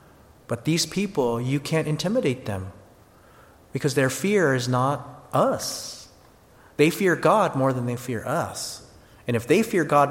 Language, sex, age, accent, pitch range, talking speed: English, male, 30-49, American, 110-145 Hz, 155 wpm